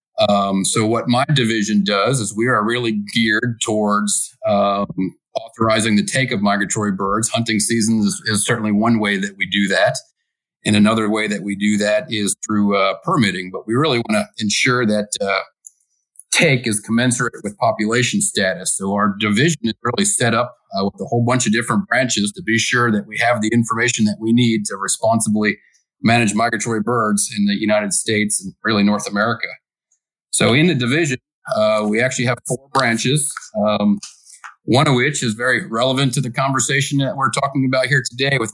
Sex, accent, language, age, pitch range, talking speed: male, American, English, 40-59, 105-125 Hz, 190 wpm